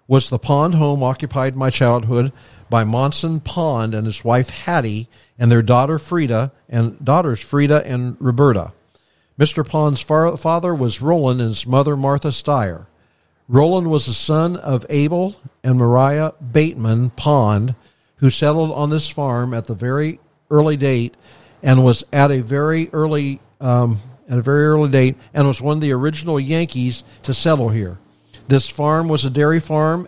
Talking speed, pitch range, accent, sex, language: 160 wpm, 125-150 Hz, American, male, English